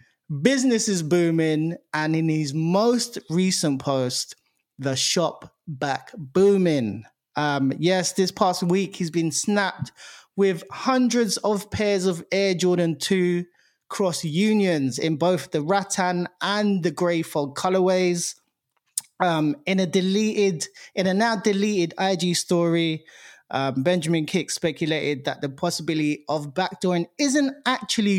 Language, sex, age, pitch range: English, male, 20-39, 145-190 Hz